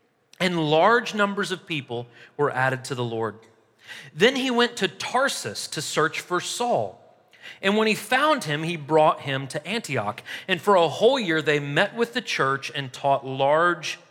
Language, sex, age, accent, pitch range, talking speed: English, male, 40-59, American, 140-225 Hz, 180 wpm